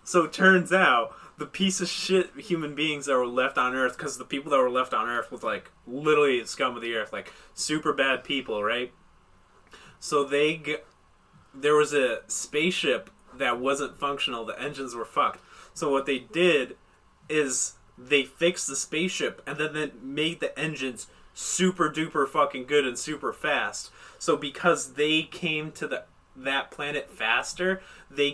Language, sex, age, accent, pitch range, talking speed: English, male, 20-39, American, 135-170 Hz, 175 wpm